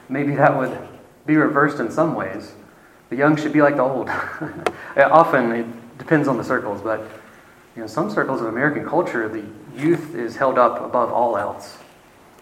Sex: male